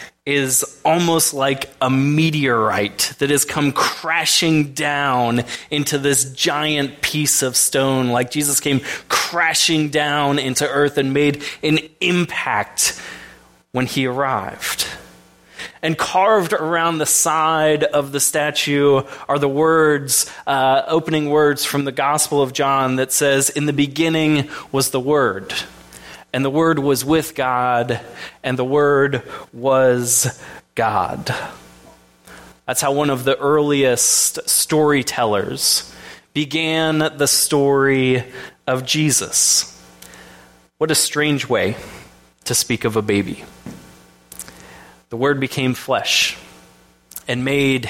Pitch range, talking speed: 120-150 Hz, 120 wpm